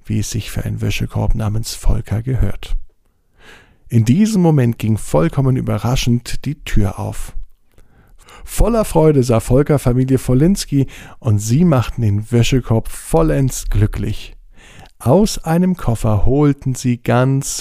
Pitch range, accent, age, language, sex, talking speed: 100-130 Hz, German, 50-69, German, male, 125 wpm